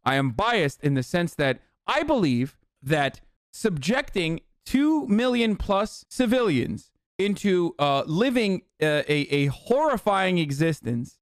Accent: American